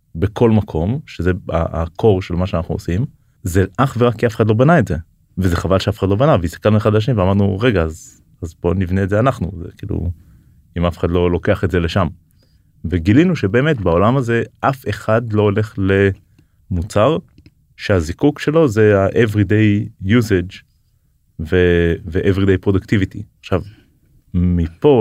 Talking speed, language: 150 wpm, Hebrew